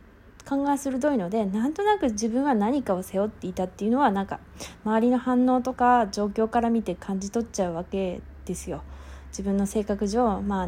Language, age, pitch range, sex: Japanese, 20-39, 195-250 Hz, female